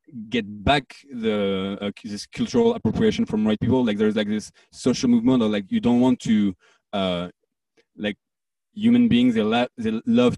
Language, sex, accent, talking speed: English, male, French, 180 wpm